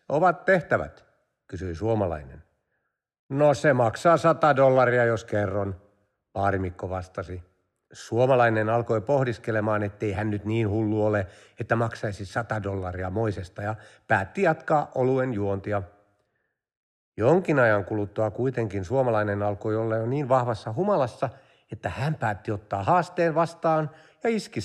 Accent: native